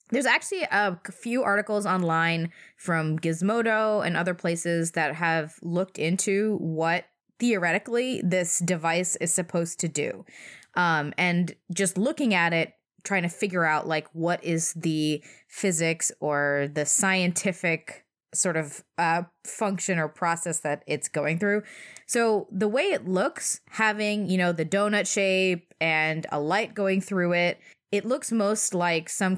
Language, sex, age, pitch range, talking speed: English, female, 20-39, 165-205 Hz, 150 wpm